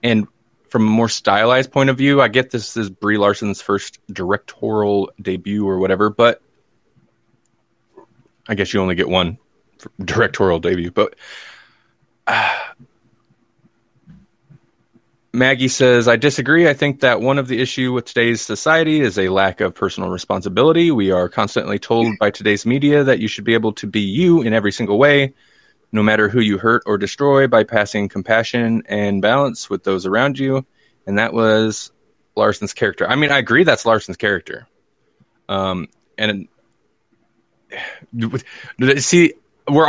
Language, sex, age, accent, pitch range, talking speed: English, male, 20-39, American, 105-140 Hz, 150 wpm